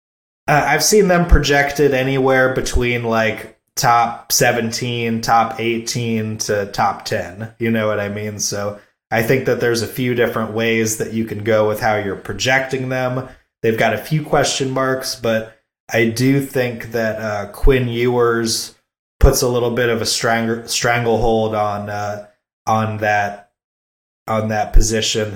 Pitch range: 110-130 Hz